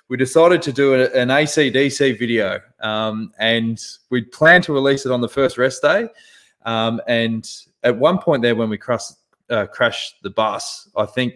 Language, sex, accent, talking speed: English, male, Australian, 180 wpm